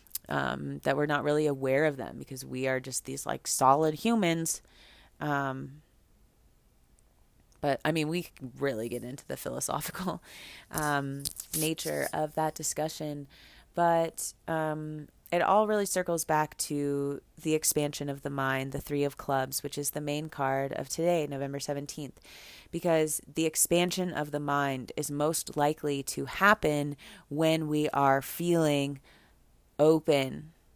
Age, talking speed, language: 30-49, 140 wpm, English